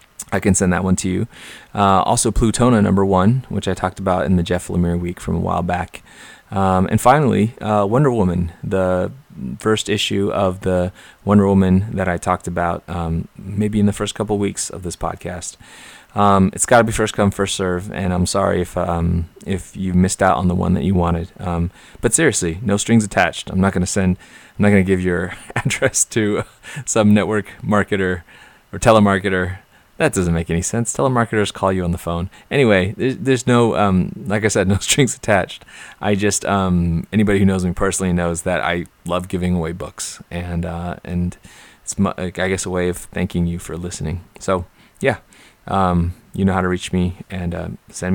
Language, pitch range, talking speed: English, 90-100 Hz, 205 wpm